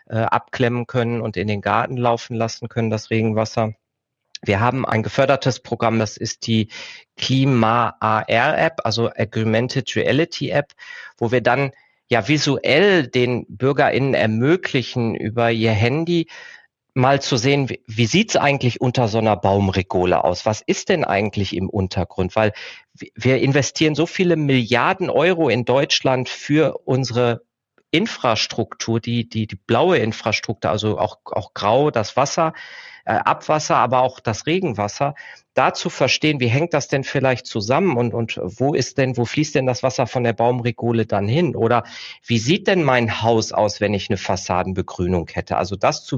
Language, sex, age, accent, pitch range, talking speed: German, male, 40-59, German, 110-135 Hz, 155 wpm